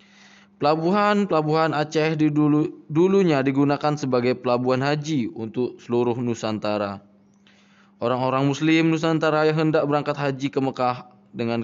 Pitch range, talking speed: 105-155 Hz, 110 wpm